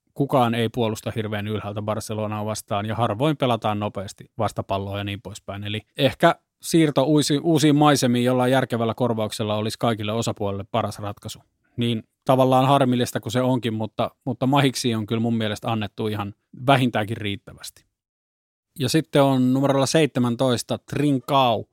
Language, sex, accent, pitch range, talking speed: Finnish, male, native, 110-130 Hz, 145 wpm